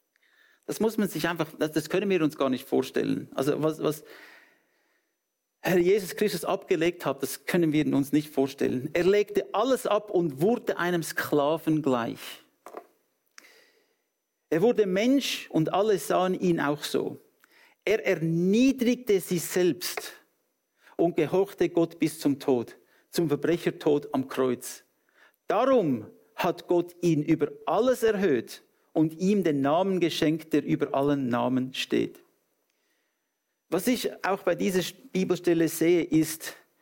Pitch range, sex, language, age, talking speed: 145-210 Hz, male, English, 50-69, 135 wpm